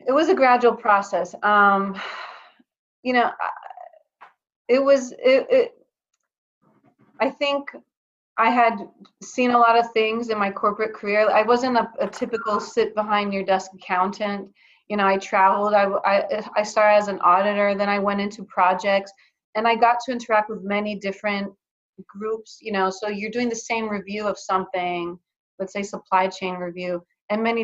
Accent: American